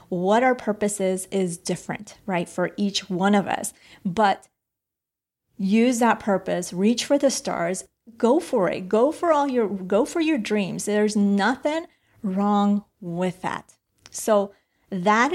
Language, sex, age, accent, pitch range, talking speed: English, female, 30-49, American, 190-245 Hz, 150 wpm